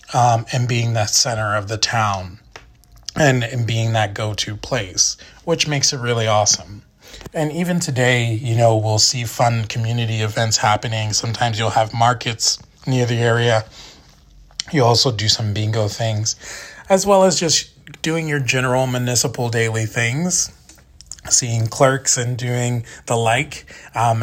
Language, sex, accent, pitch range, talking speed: English, male, American, 110-125 Hz, 150 wpm